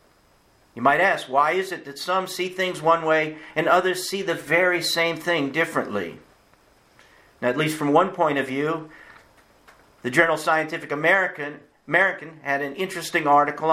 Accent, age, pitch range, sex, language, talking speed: American, 50-69, 150-180 Hz, male, English, 155 wpm